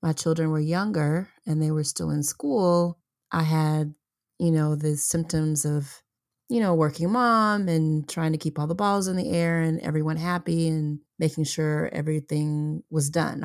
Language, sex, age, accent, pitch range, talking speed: English, female, 30-49, American, 150-170 Hz, 180 wpm